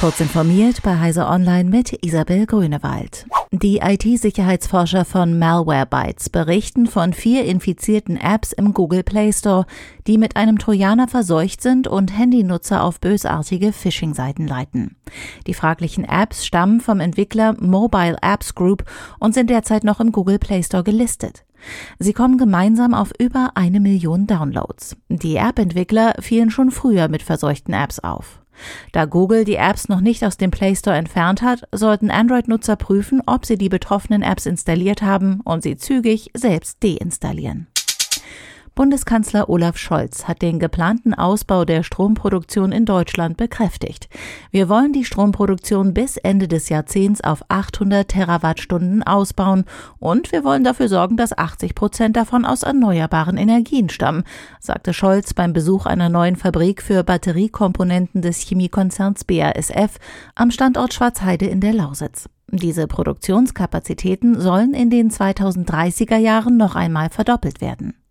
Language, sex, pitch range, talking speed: German, female, 175-220 Hz, 140 wpm